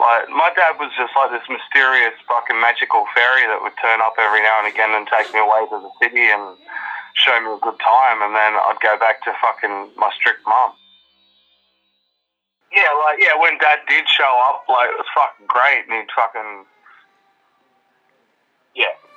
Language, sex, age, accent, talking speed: English, male, 20-39, Australian, 185 wpm